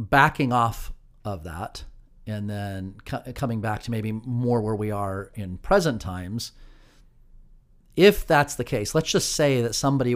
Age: 40-59